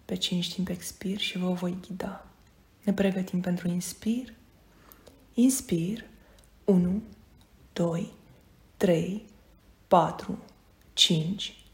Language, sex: Romanian, female